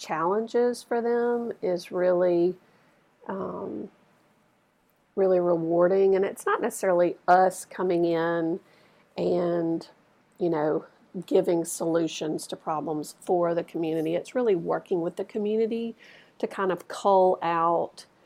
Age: 50-69